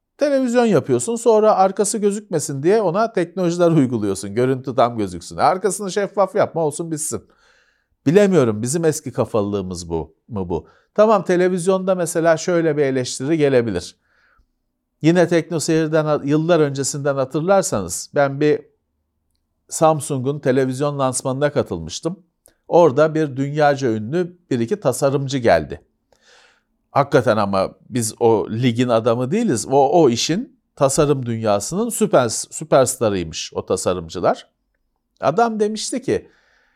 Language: Turkish